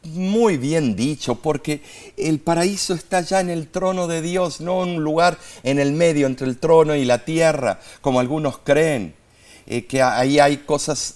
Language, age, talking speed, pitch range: Spanish, 50-69, 185 wpm, 130-185 Hz